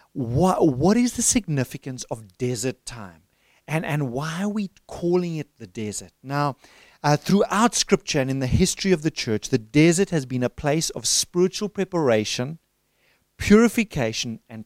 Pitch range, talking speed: 120-160 Hz, 160 wpm